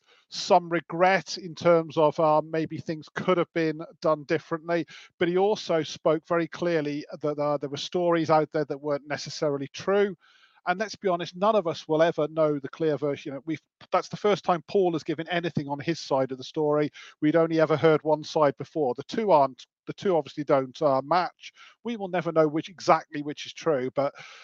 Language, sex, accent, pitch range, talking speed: English, male, British, 145-170 Hz, 205 wpm